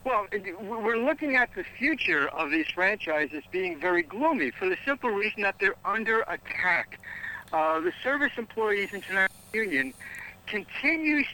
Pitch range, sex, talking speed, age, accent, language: 175-285 Hz, male, 145 wpm, 60-79, American, English